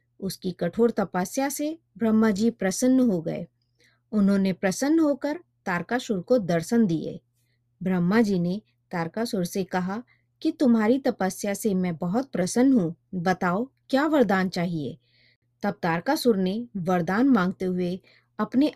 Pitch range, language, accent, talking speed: 175-250 Hz, Hindi, native, 120 wpm